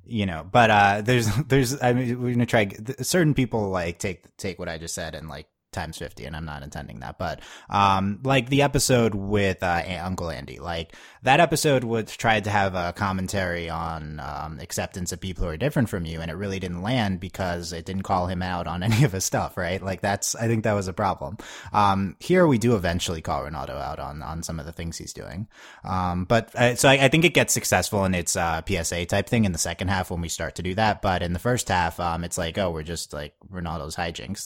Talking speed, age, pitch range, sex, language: 245 wpm, 20-39, 85-115 Hz, male, English